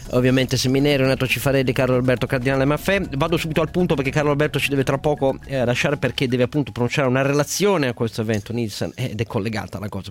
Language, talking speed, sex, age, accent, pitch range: Italian, 230 wpm, male, 40-59, native, 115-150 Hz